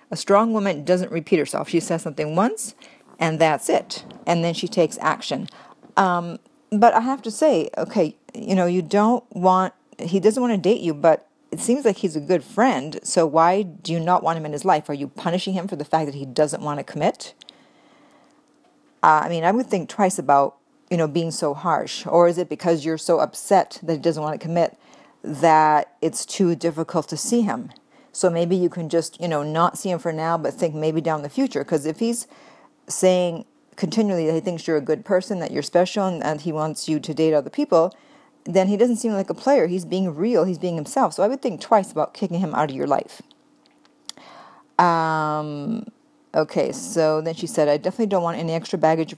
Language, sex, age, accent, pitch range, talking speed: English, female, 50-69, American, 160-205 Hz, 220 wpm